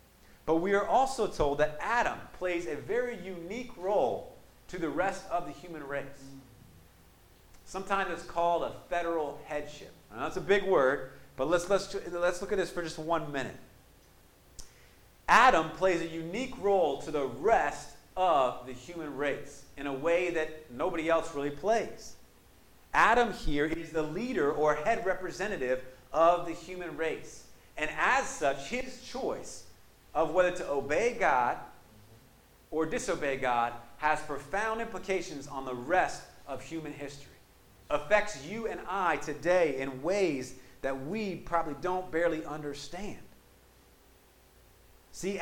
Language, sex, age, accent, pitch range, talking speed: English, male, 40-59, American, 140-185 Hz, 145 wpm